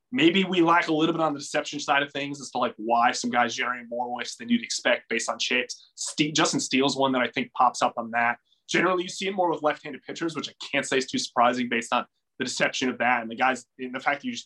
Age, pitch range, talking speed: 20-39, 125-175 Hz, 285 wpm